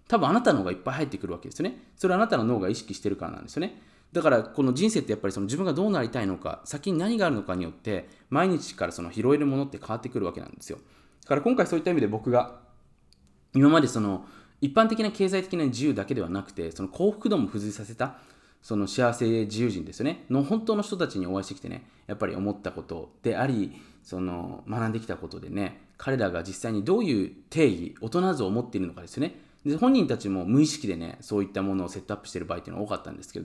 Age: 20-39